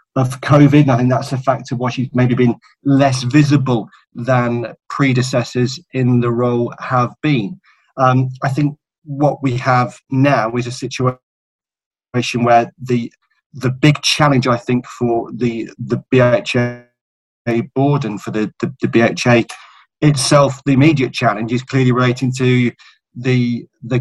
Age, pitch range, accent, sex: 40-59, 120-130 Hz, British, male